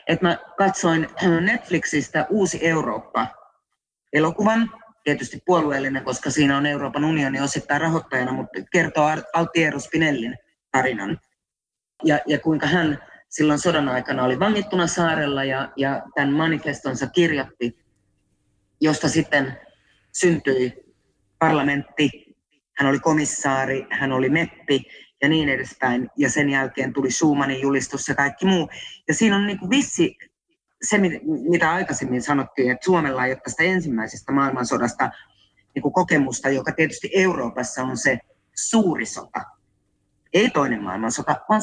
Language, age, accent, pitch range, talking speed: Finnish, 30-49, native, 135-175 Hz, 125 wpm